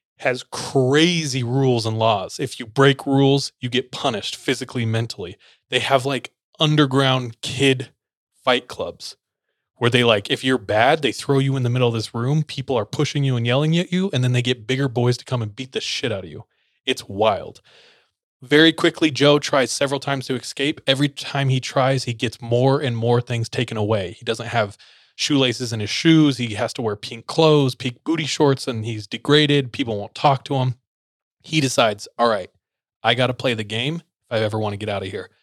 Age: 20-39